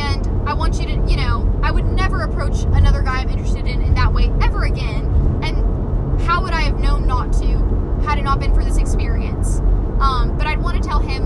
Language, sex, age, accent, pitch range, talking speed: English, female, 10-29, American, 75-95 Hz, 215 wpm